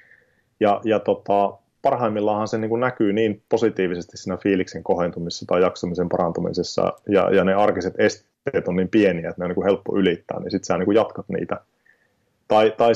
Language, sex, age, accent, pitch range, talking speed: Finnish, male, 30-49, native, 90-120 Hz, 170 wpm